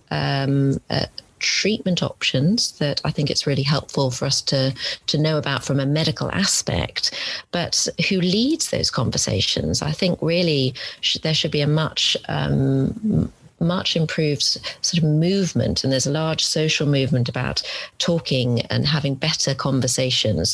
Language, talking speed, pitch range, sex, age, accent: English, 150 wpm, 130-165 Hz, female, 40-59, British